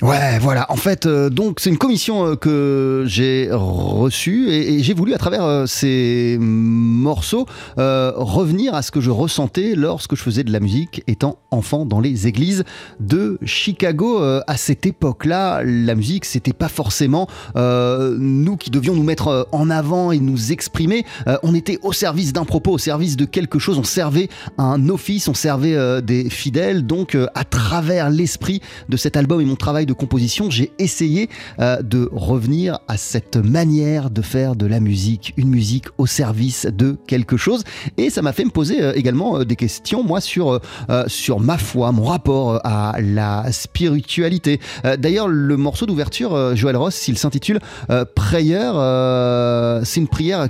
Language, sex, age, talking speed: French, male, 30-49, 185 wpm